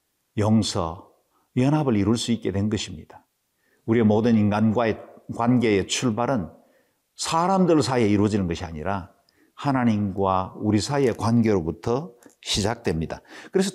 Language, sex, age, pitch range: Korean, male, 50-69, 105-145 Hz